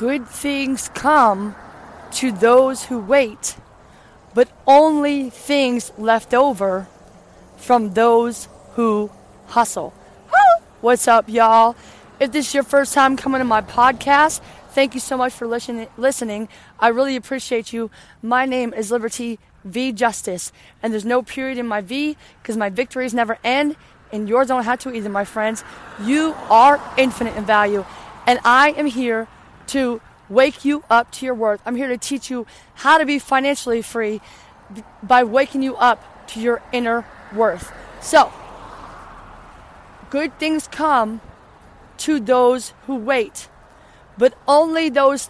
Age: 30-49